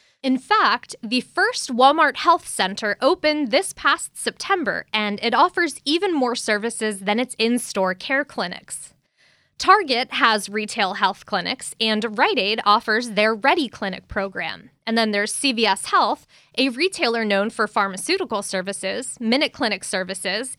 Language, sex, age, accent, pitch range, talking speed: English, female, 20-39, American, 205-270 Hz, 145 wpm